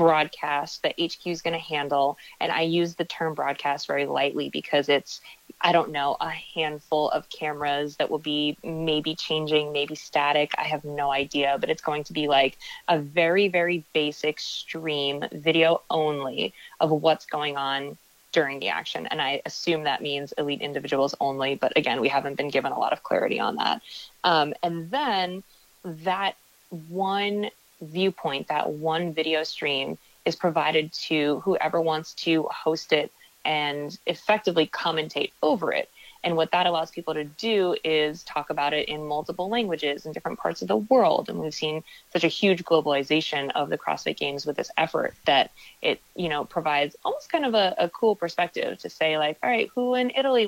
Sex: female